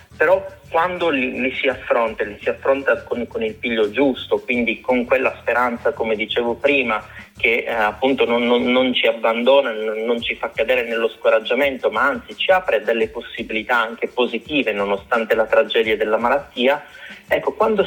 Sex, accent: male, native